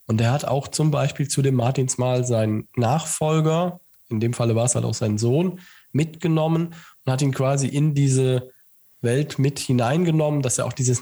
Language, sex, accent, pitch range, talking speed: German, male, German, 120-150 Hz, 185 wpm